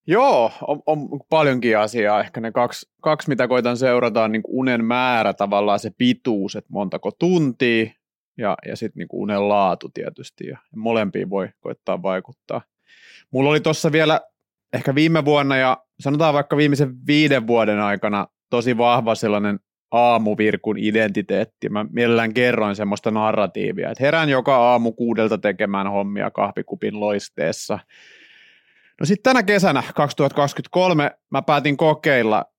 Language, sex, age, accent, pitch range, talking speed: Finnish, male, 30-49, native, 110-145 Hz, 140 wpm